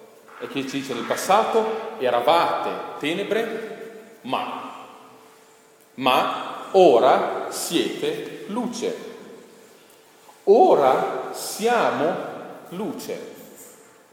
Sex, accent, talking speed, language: male, native, 70 wpm, Italian